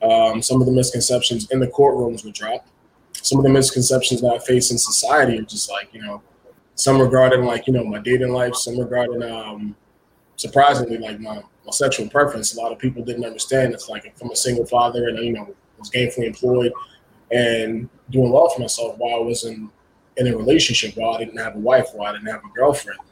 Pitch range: 115-130 Hz